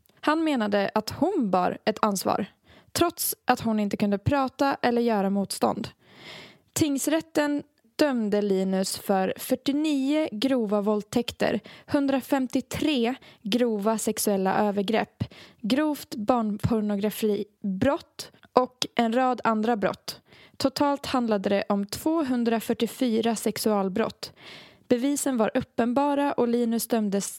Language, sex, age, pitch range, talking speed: Swedish, female, 20-39, 210-270 Hz, 100 wpm